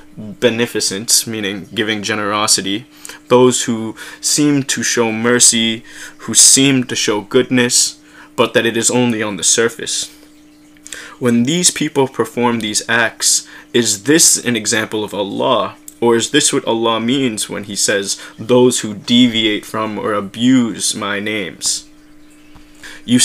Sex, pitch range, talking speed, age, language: male, 105-125 Hz, 135 wpm, 20-39, English